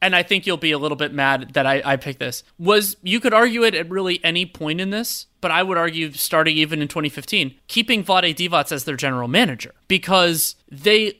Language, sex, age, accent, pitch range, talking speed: English, male, 30-49, American, 140-180 Hz, 225 wpm